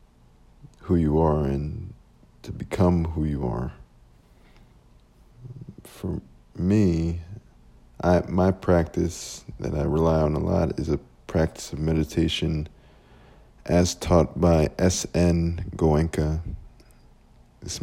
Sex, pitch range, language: male, 80-90 Hz, English